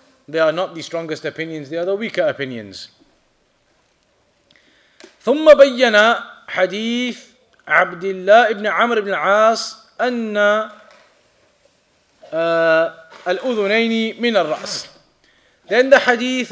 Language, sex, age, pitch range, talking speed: English, male, 30-49, 185-235 Hz, 50 wpm